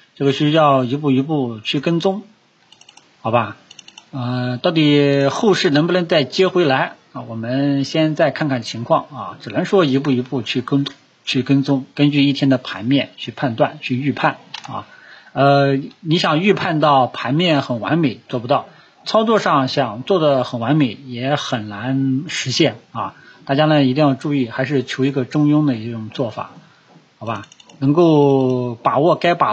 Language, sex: Chinese, male